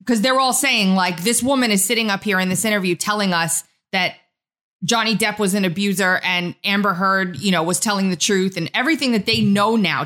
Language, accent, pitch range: English, American, 180-230 Hz